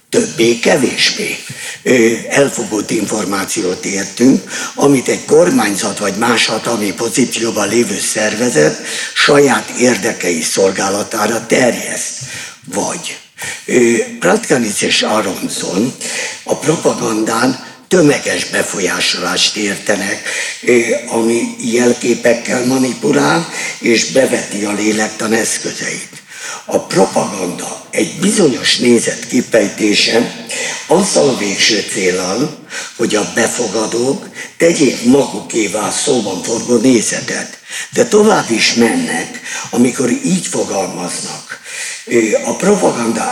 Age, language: 50-69, Hungarian